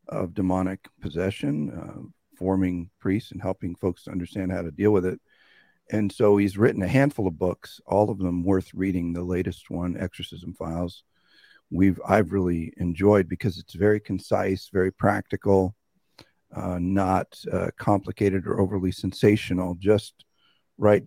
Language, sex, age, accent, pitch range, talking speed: English, male, 50-69, American, 90-100 Hz, 150 wpm